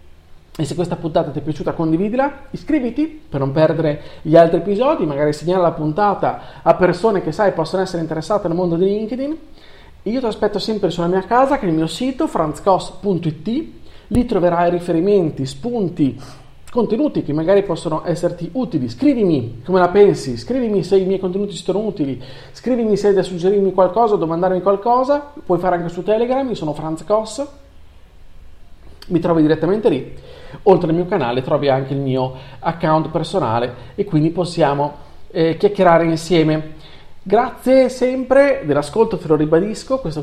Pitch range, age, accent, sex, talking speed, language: 145-205 Hz, 40-59, native, male, 160 wpm, Italian